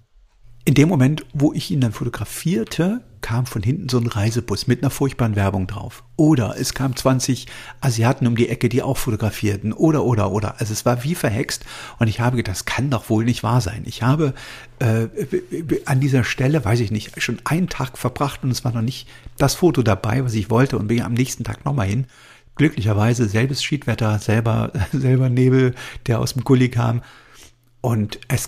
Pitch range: 115-140 Hz